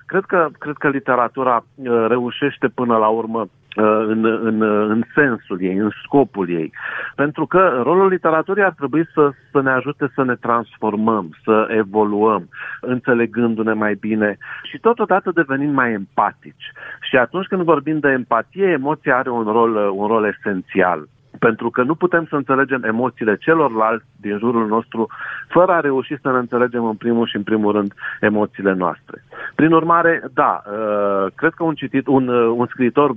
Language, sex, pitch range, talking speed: Romanian, male, 110-145 Hz, 155 wpm